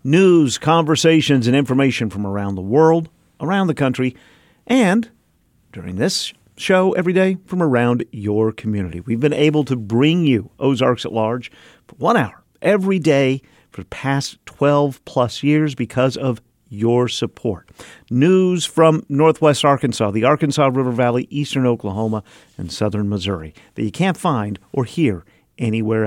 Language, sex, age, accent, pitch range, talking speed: English, male, 50-69, American, 110-155 Hz, 150 wpm